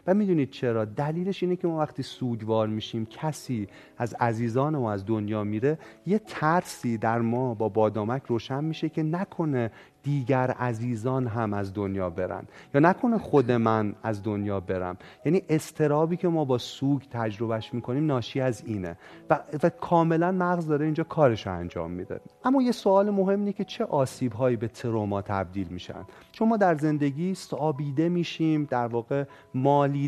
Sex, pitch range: male, 110-160 Hz